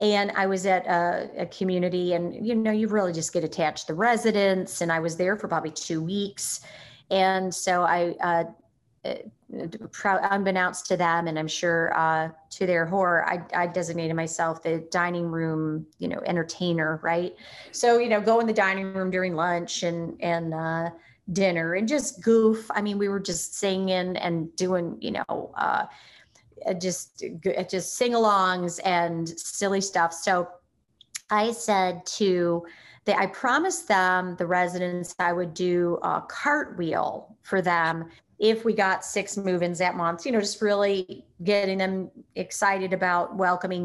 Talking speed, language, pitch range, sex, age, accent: 165 wpm, English, 170-195 Hz, female, 30-49, American